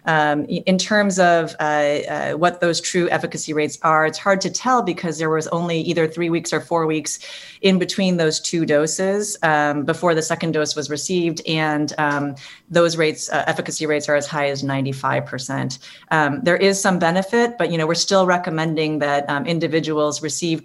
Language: English